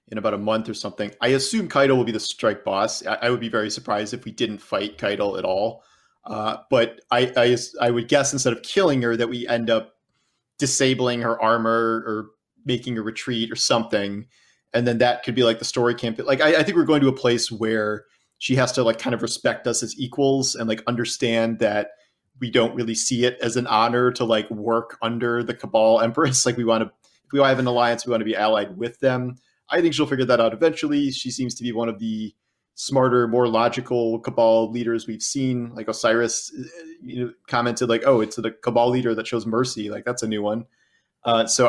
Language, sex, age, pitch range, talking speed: English, male, 30-49, 115-125 Hz, 225 wpm